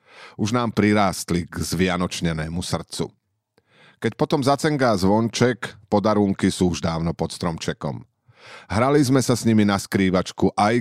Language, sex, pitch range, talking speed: Slovak, male, 90-115 Hz, 135 wpm